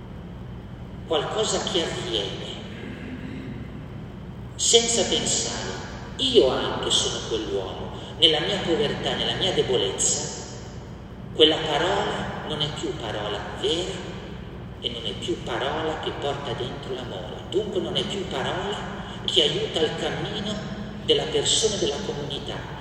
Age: 50-69